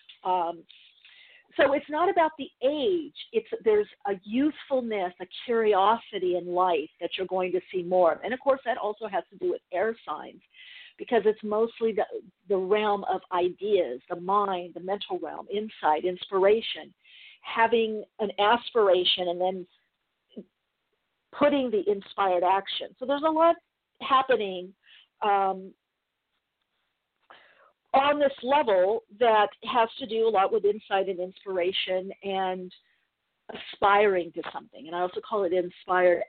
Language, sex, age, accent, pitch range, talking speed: English, female, 50-69, American, 185-255 Hz, 140 wpm